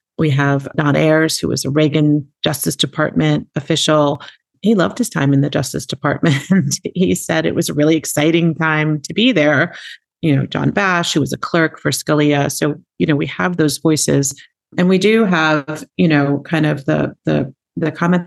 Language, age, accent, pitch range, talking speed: English, 40-59, American, 145-170 Hz, 195 wpm